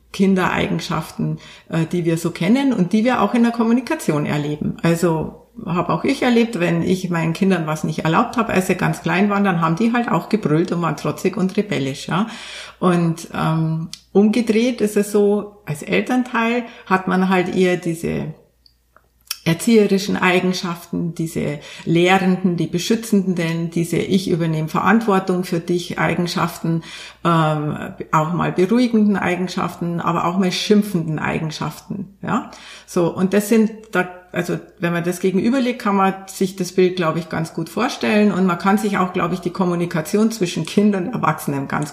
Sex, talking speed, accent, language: female, 160 wpm, Austrian, German